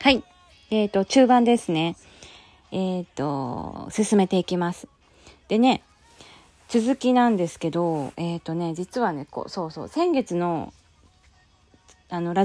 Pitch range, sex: 155-235 Hz, female